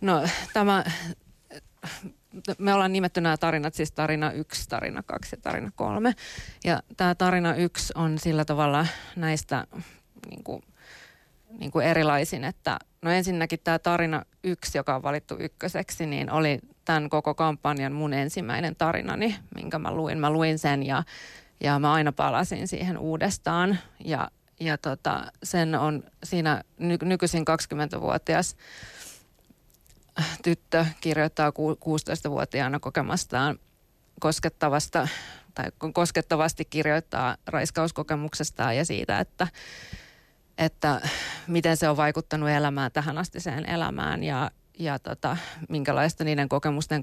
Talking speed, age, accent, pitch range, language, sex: 120 wpm, 30-49, native, 150-170 Hz, Finnish, female